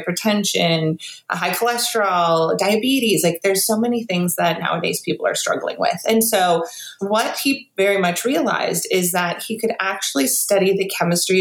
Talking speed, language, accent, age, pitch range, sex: 155 wpm, English, American, 30-49, 180-230 Hz, female